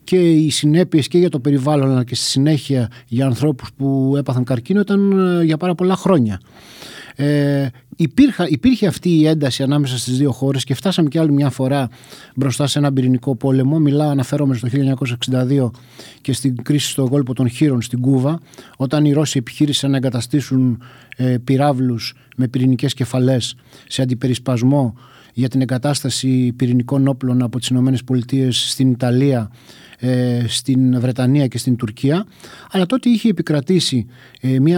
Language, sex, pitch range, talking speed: Greek, male, 130-155 Hz, 150 wpm